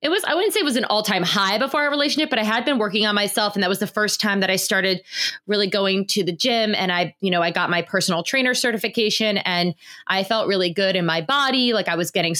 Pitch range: 175-210 Hz